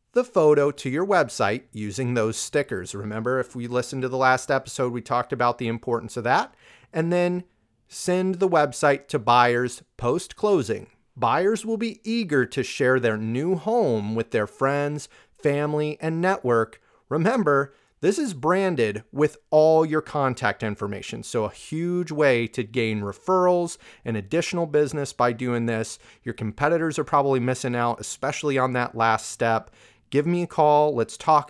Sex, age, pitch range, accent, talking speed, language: male, 30-49, 120-150 Hz, American, 160 wpm, English